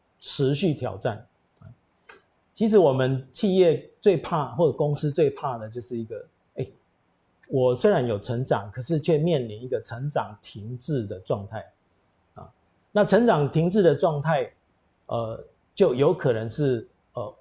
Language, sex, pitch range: Chinese, male, 110-150 Hz